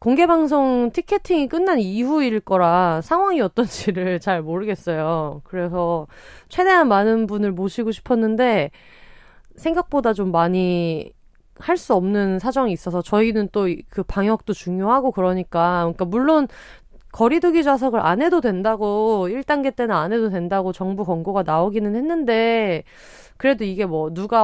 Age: 30-49